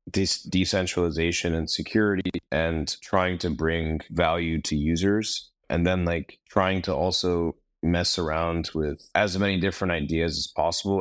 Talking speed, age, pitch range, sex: 140 wpm, 30-49, 80-100 Hz, male